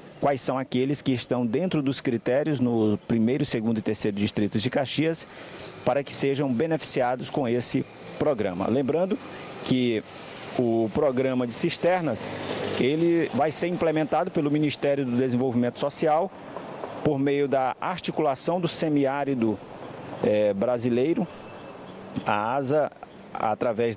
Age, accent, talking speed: 50-69, Brazilian, 125 wpm